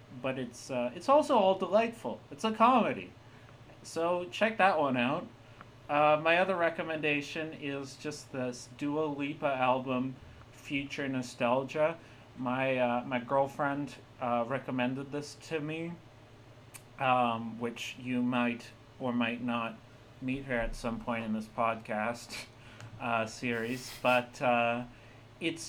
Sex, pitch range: male, 120-145 Hz